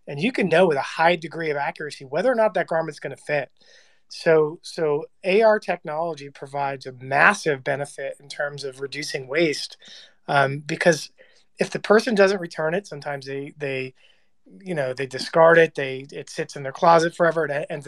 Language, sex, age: English, male, 30-49